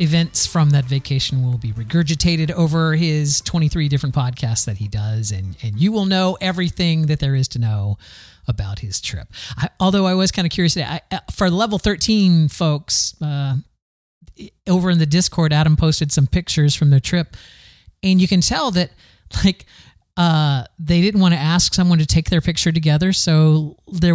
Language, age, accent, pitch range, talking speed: English, 40-59, American, 140-180 Hz, 185 wpm